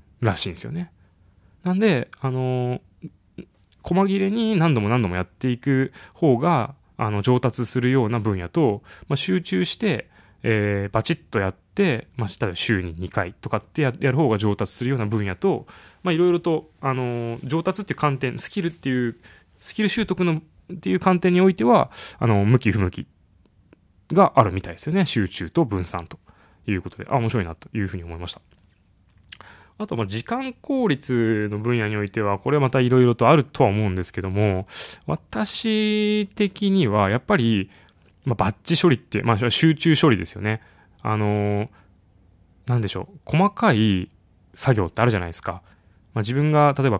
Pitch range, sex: 95-145 Hz, male